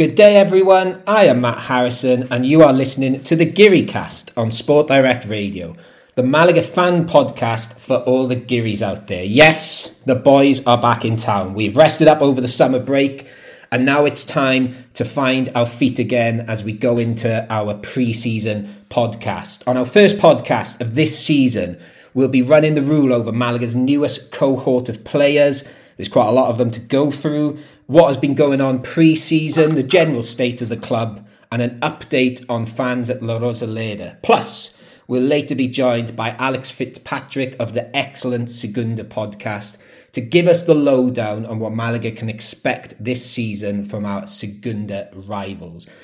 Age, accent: 30-49, British